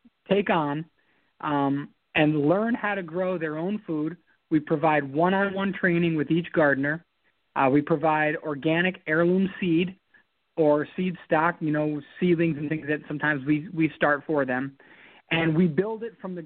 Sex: male